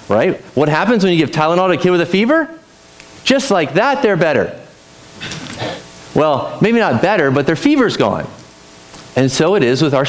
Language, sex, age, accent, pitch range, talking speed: English, male, 30-49, American, 115-180 Hz, 190 wpm